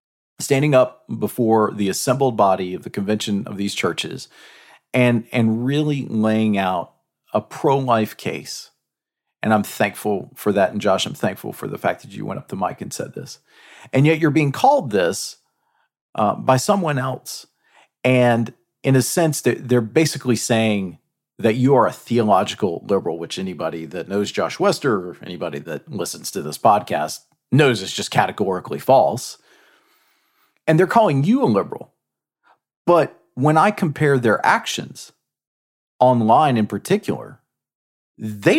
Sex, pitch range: male, 110-180 Hz